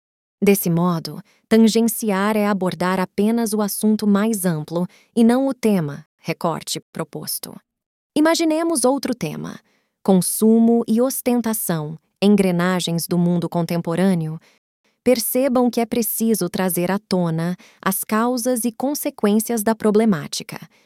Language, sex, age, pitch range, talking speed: Portuguese, female, 20-39, 175-230 Hz, 110 wpm